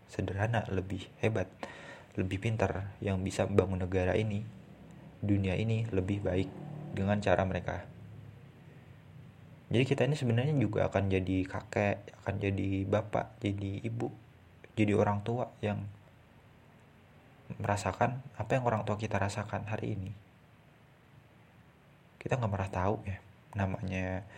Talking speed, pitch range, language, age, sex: 120 wpm, 95-115 Hz, Indonesian, 20-39, male